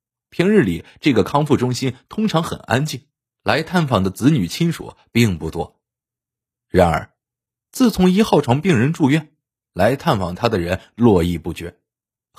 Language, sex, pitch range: Chinese, male, 100-145 Hz